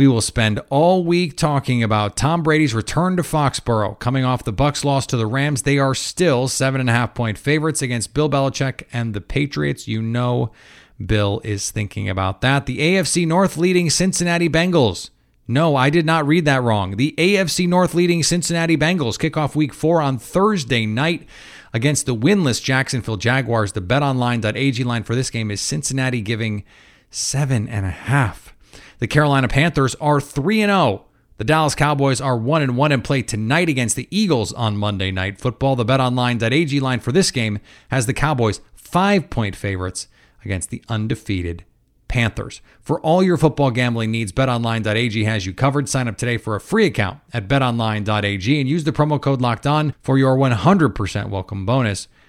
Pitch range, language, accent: 110-150 Hz, English, American